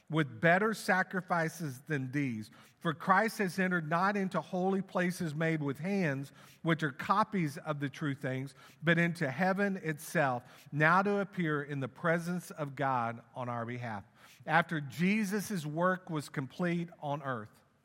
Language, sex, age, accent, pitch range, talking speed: English, male, 50-69, American, 130-170 Hz, 150 wpm